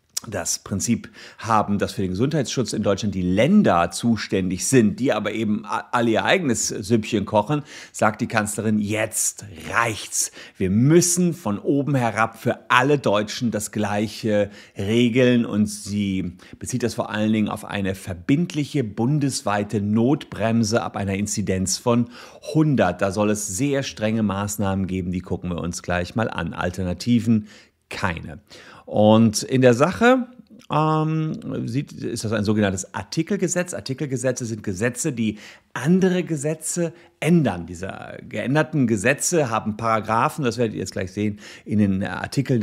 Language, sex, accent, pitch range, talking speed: German, male, German, 100-140 Hz, 145 wpm